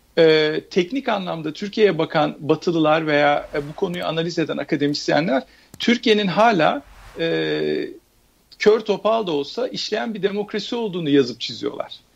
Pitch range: 150-210 Hz